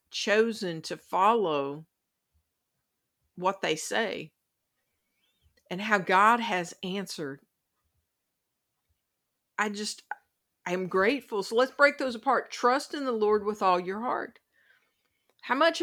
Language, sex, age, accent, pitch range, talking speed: English, female, 50-69, American, 185-240 Hz, 115 wpm